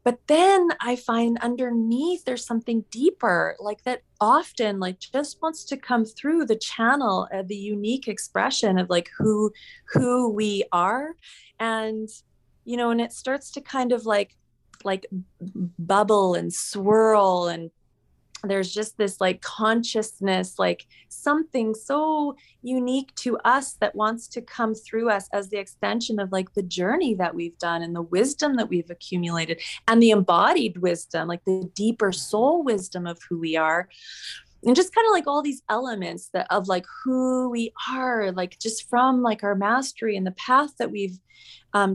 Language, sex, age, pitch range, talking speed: English, female, 30-49, 195-250 Hz, 165 wpm